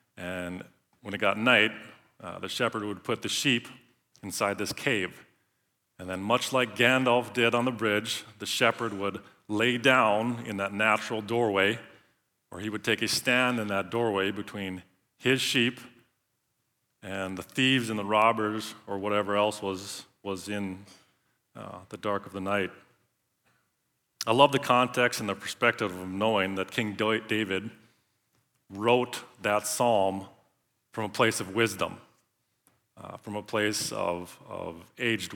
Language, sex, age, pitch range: English, male, 40-59, 100-120 Hz